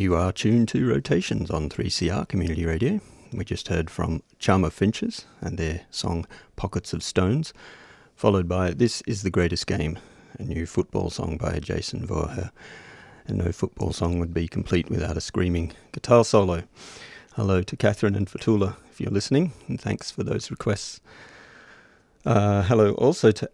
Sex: male